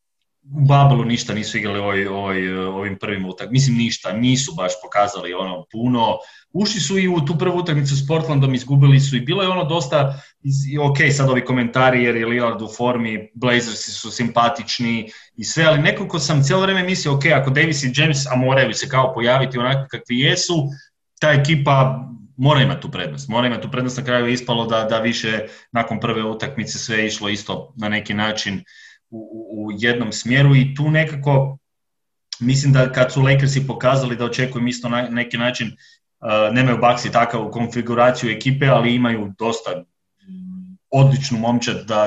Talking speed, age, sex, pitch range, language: 175 wpm, 30-49, male, 105-135 Hz, Croatian